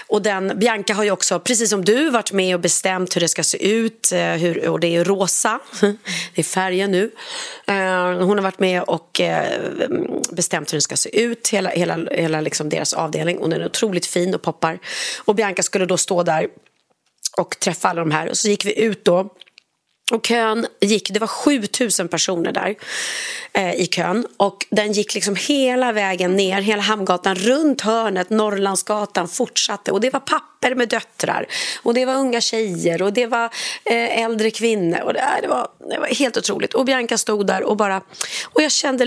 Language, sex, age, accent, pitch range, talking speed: Swedish, female, 30-49, native, 190-235 Hz, 185 wpm